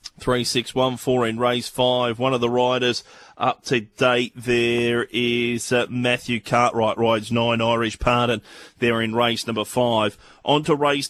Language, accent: English, Australian